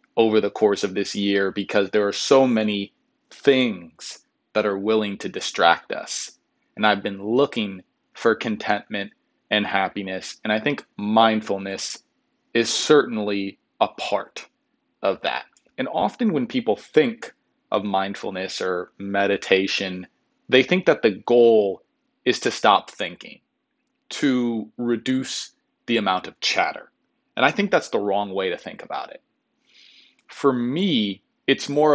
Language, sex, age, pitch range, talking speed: English, male, 30-49, 100-130 Hz, 140 wpm